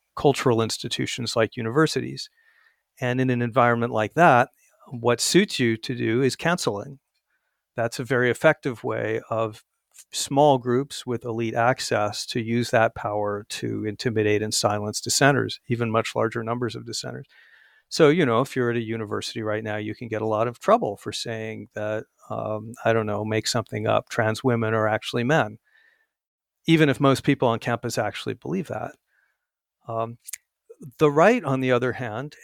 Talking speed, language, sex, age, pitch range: 170 wpm, English, male, 50-69, 115-140 Hz